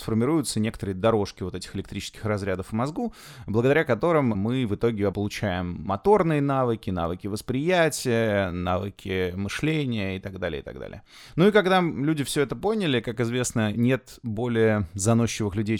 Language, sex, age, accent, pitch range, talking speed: Russian, male, 20-39, native, 110-150 Hz, 150 wpm